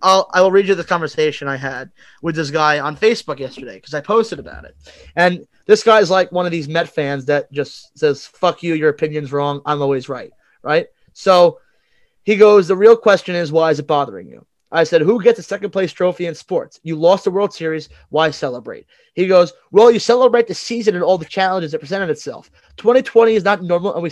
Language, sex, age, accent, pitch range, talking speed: English, male, 20-39, American, 165-215 Hz, 225 wpm